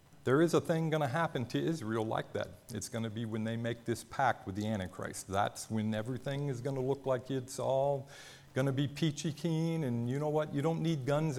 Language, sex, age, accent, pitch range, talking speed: English, male, 50-69, American, 105-135 Hz, 240 wpm